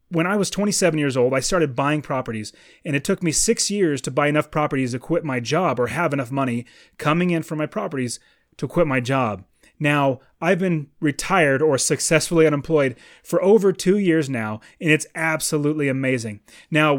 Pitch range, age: 135-170 Hz, 30-49